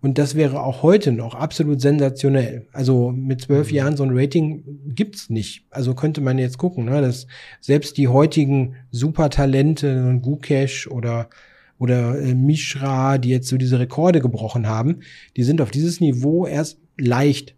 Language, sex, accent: German, male, German